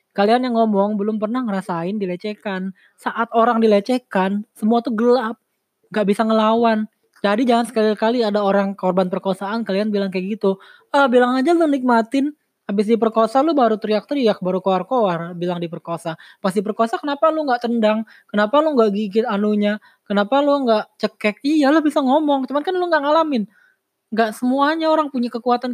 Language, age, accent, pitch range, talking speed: Indonesian, 20-39, native, 190-245 Hz, 160 wpm